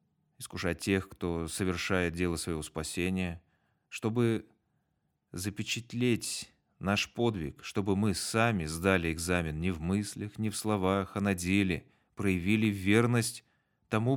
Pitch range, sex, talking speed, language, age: 90-115 Hz, male, 120 wpm, Russian, 30-49